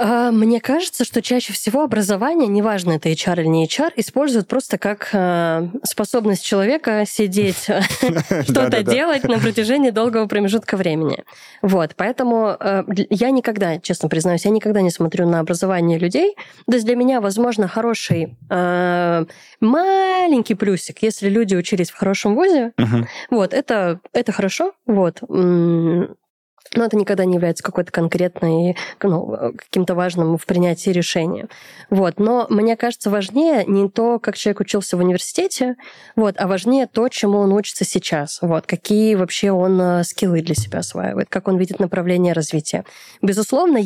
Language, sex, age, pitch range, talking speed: Russian, female, 20-39, 180-230 Hz, 135 wpm